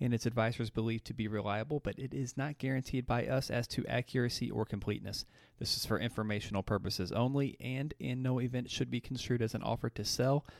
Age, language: 30-49, English